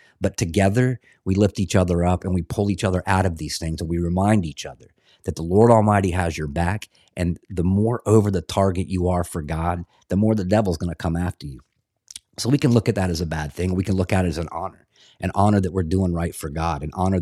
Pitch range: 85-105 Hz